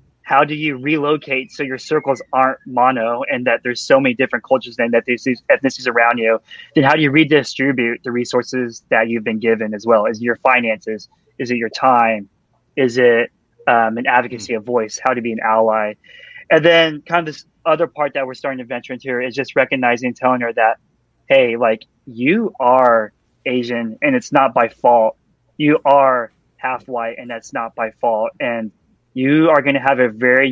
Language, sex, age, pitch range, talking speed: English, male, 20-39, 115-135 Hz, 205 wpm